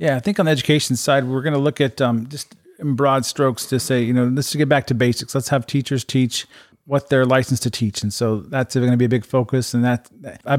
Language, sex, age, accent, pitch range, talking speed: English, male, 40-59, American, 120-140 Hz, 265 wpm